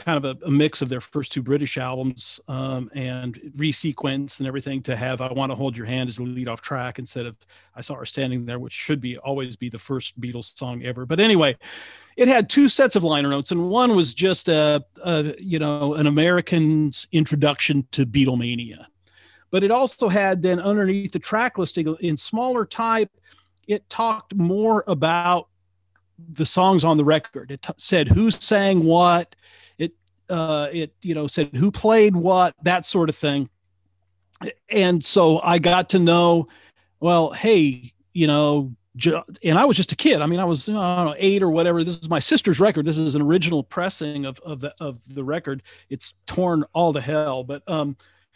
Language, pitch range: English, 135-180 Hz